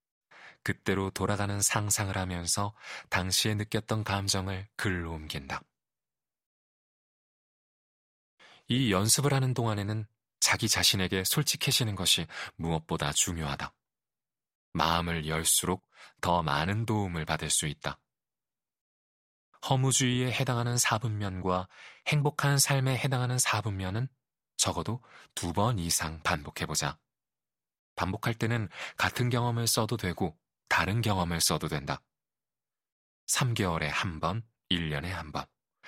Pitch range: 85-120 Hz